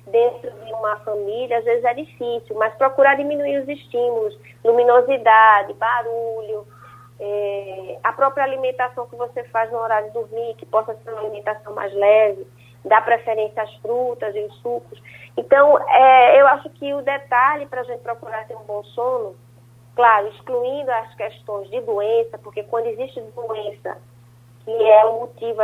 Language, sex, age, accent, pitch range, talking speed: Portuguese, female, 20-39, Brazilian, 205-240 Hz, 160 wpm